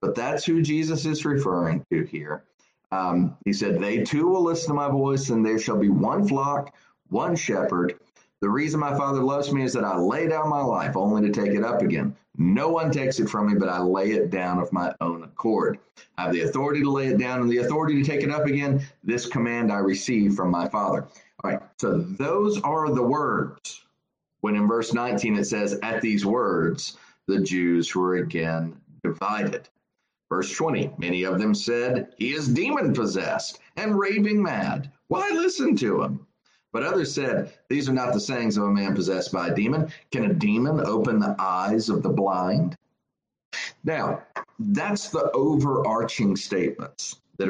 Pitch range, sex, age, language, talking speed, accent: 100-150 Hz, male, 40-59, English, 190 wpm, American